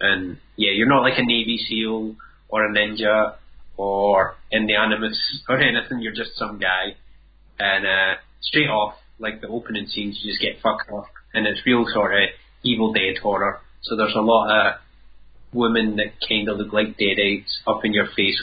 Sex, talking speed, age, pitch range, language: male, 190 wpm, 20-39, 105-120 Hz, English